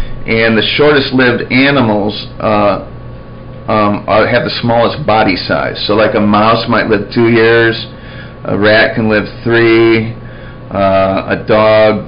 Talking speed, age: 135 wpm, 40-59